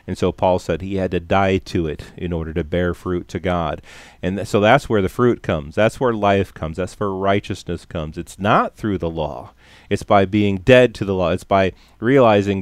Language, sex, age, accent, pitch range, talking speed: English, male, 30-49, American, 95-120 Hz, 225 wpm